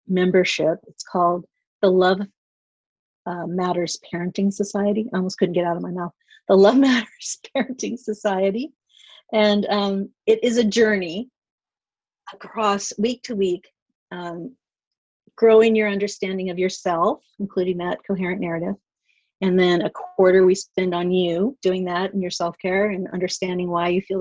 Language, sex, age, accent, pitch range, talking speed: English, female, 40-59, American, 180-215 Hz, 150 wpm